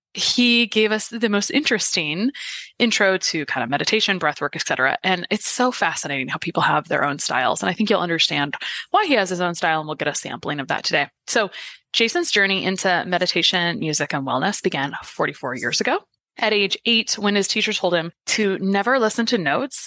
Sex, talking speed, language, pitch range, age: female, 205 wpm, English, 170-240 Hz, 20-39